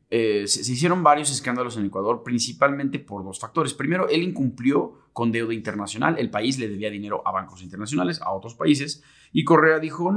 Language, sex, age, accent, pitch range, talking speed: Spanish, male, 30-49, Mexican, 105-145 Hz, 190 wpm